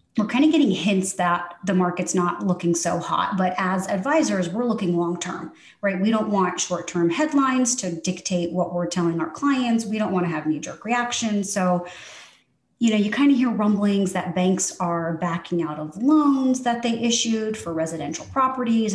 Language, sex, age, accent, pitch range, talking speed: English, female, 30-49, American, 175-225 Hz, 185 wpm